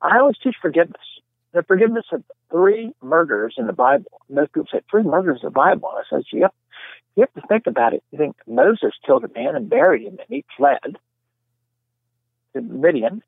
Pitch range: 120-195 Hz